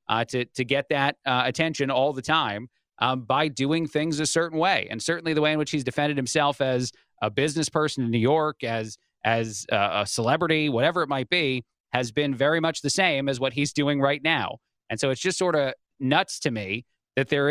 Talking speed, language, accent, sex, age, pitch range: 225 wpm, English, American, male, 30-49, 125-150 Hz